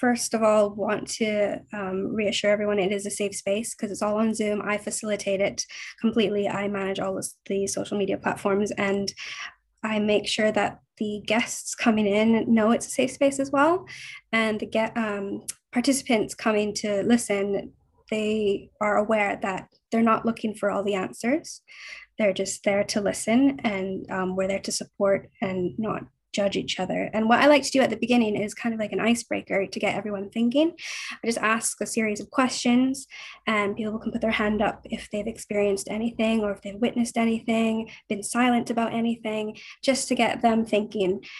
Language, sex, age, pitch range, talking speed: English, female, 10-29, 205-235 Hz, 190 wpm